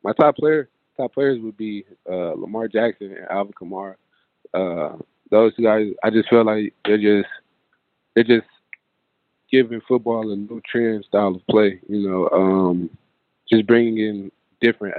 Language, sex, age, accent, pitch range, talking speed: English, male, 20-39, American, 95-110 Hz, 160 wpm